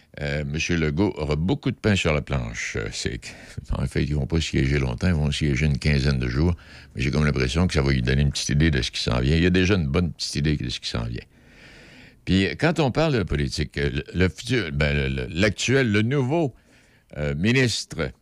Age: 60-79